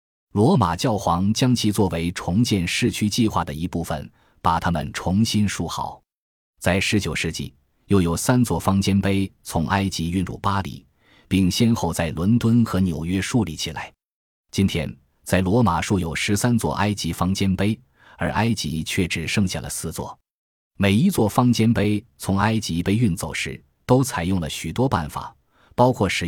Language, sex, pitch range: Chinese, male, 85-115 Hz